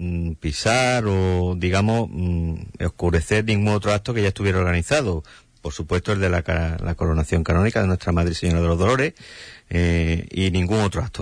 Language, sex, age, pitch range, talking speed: Spanish, male, 50-69, 85-110 Hz, 165 wpm